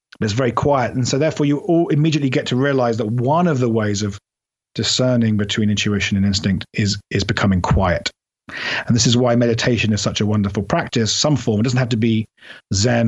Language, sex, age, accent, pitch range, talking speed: English, male, 40-59, British, 105-125 Hz, 210 wpm